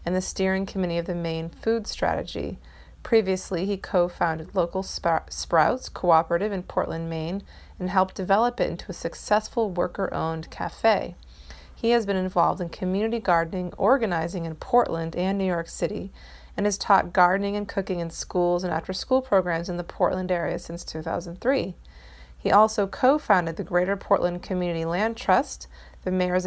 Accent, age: American, 20-39